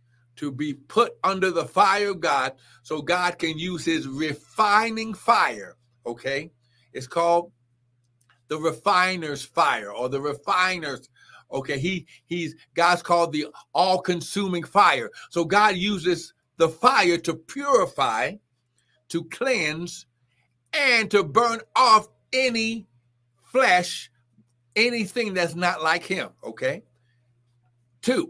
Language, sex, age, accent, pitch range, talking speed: English, male, 60-79, American, 150-235 Hz, 115 wpm